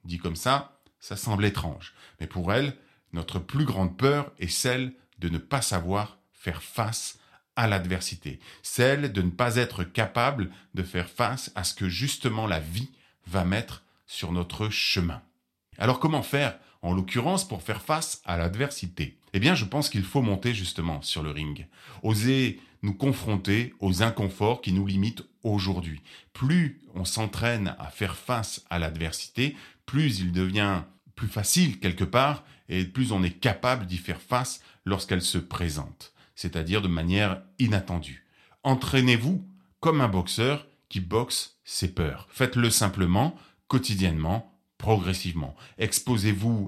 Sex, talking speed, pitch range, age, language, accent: male, 150 wpm, 90-125 Hz, 30-49, French, French